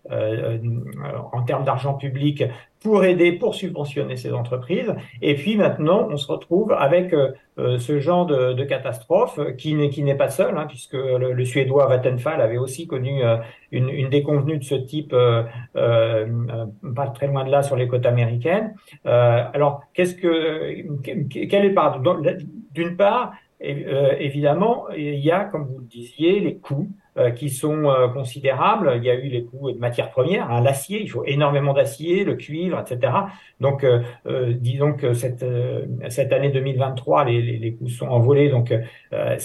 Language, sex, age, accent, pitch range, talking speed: French, male, 50-69, French, 125-155 Hz, 180 wpm